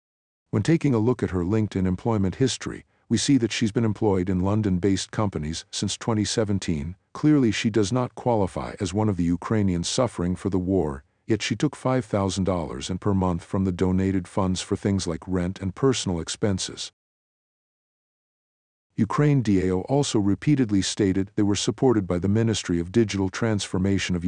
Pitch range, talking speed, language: 95-110 Hz, 165 wpm, English